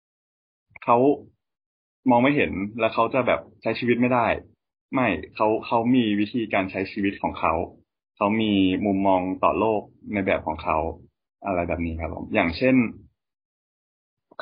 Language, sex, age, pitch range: Thai, male, 20-39, 95-115 Hz